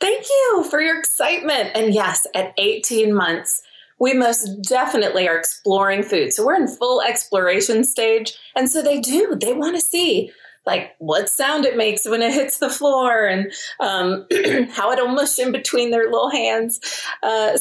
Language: English